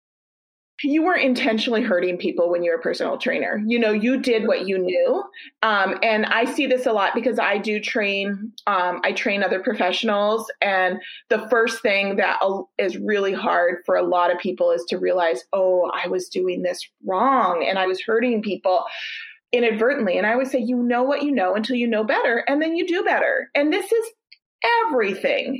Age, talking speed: 30-49, 195 wpm